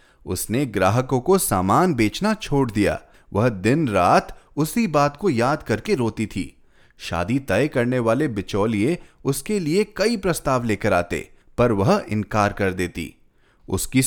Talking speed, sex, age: 145 wpm, male, 30-49